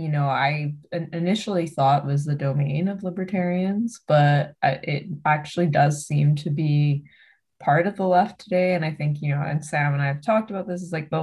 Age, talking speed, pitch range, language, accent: 20-39, 205 wpm, 145-170 Hz, English, American